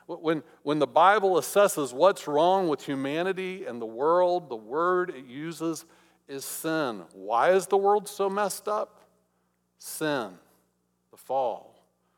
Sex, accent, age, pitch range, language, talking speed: male, American, 50-69, 120-180 Hz, English, 140 wpm